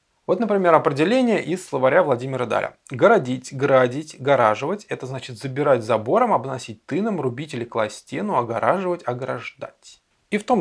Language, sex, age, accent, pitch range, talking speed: Russian, male, 20-39, native, 130-195 Hz, 140 wpm